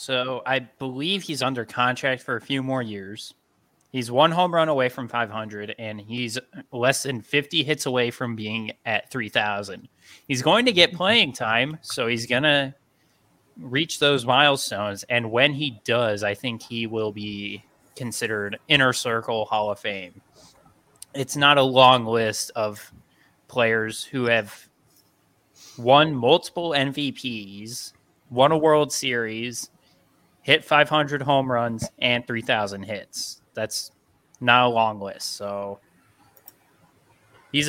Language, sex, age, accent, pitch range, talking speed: English, male, 20-39, American, 110-140 Hz, 140 wpm